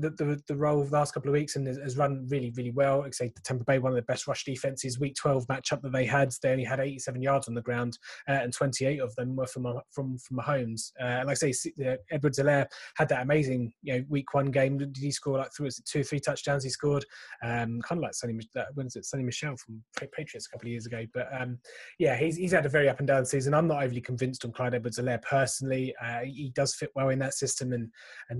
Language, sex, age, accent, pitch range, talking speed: English, male, 20-39, British, 120-140 Hz, 265 wpm